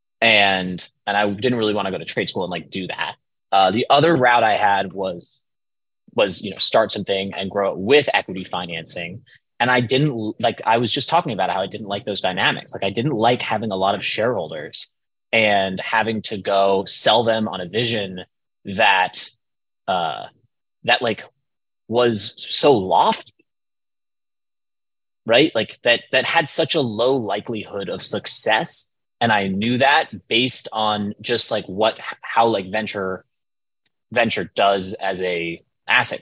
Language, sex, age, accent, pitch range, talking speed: English, male, 20-39, American, 95-115 Hz, 165 wpm